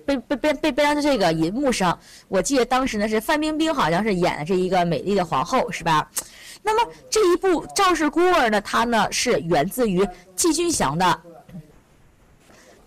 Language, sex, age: Chinese, female, 20-39